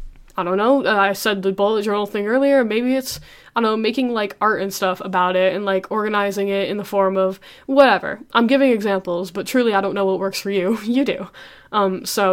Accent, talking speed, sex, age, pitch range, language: American, 235 wpm, female, 10-29, 195-250 Hz, English